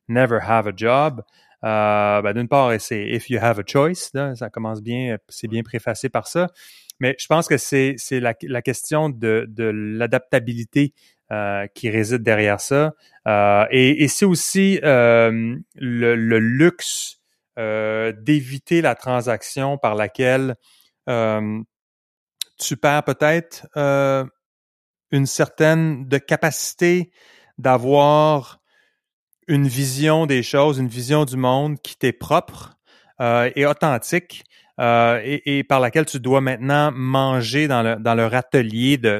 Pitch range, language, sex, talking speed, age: 115-145 Hz, French, male, 145 wpm, 30-49